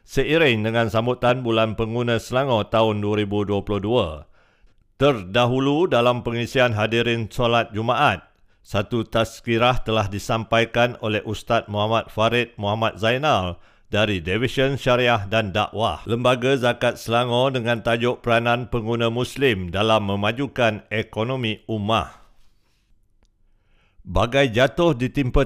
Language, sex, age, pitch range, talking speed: Malay, male, 50-69, 105-125 Hz, 105 wpm